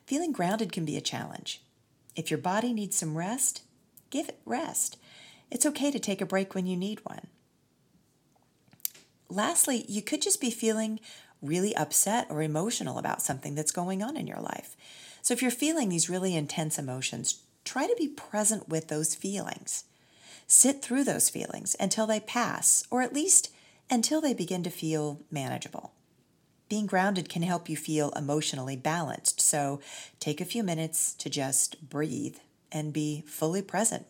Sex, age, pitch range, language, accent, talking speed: female, 40-59, 155-225 Hz, English, American, 165 wpm